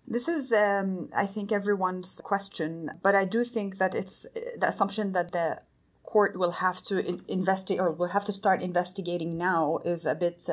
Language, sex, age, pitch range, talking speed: English, female, 30-49, 165-205 Hz, 180 wpm